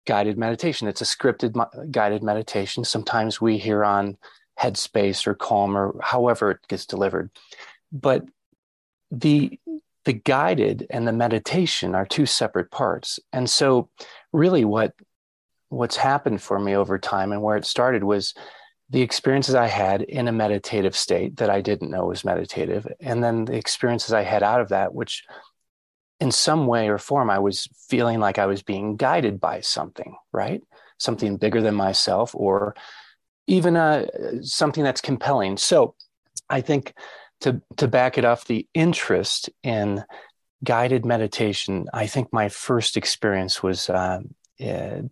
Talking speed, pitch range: 150 wpm, 100-125 Hz